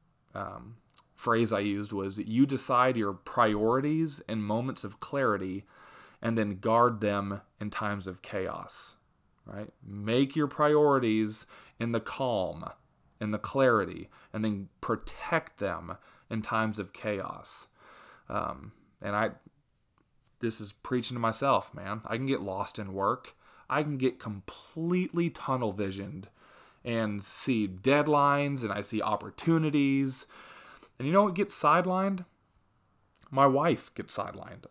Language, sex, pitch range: English, male, 105-135 Hz